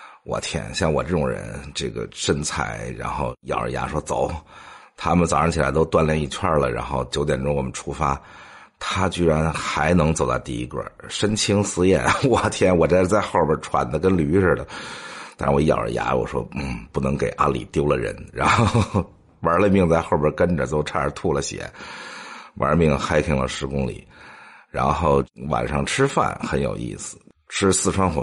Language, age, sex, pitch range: English, 50-69, male, 70-90 Hz